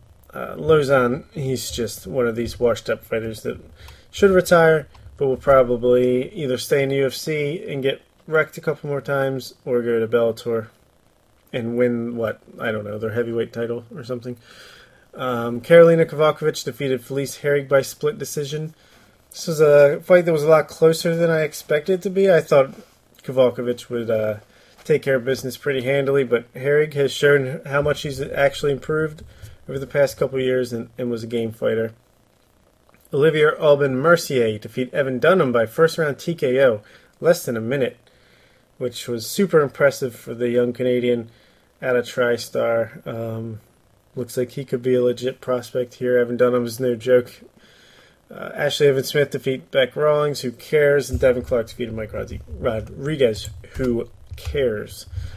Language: English